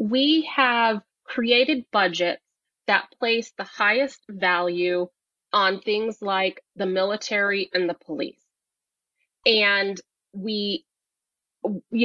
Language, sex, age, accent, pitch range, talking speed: English, female, 30-49, American, 190-260 Hz, 100 wpm